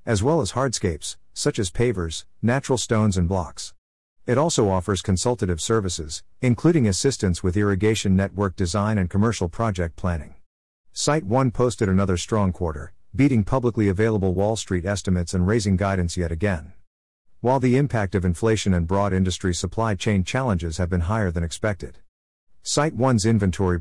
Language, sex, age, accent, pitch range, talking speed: English, male, 50-69, American, 90-115 Hz, 155 wpm